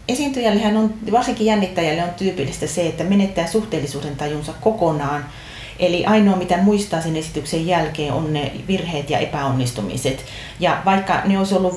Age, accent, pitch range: 40-59, native, 145-195 Hz